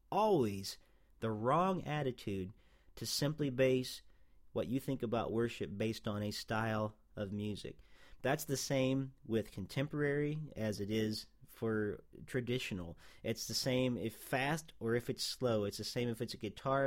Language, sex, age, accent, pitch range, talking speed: English, male, 40-59, American, 110-130 Hz, 155 wpm